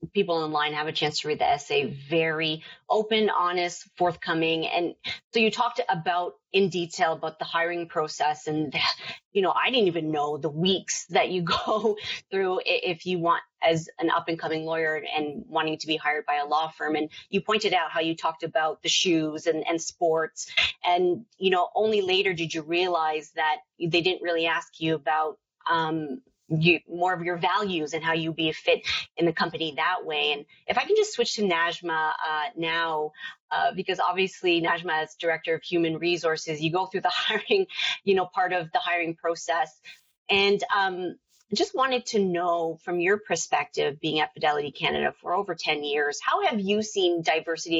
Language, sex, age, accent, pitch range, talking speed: English, female, 30-49, American, 160-190 Hz, 190 wpm